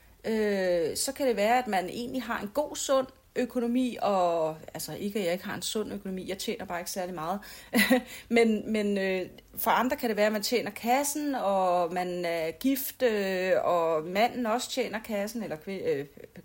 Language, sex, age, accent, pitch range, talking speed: Danish, female, 30-49, native, 200-255 Hz, 180 wpm